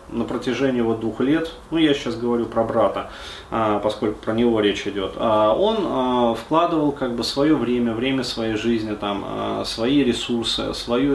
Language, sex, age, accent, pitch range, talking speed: Russian, male, 20-39, native, 115-150 Hz, 180 wpm